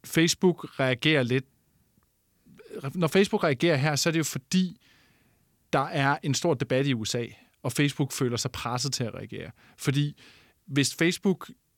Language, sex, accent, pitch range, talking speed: Danish, male, native, 120-145 Hz, 155 wpm